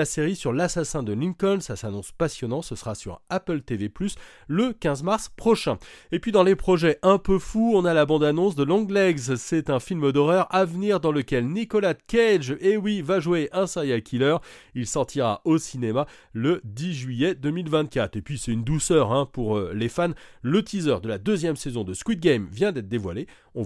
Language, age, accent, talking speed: French, 30-49, French, 205 wpm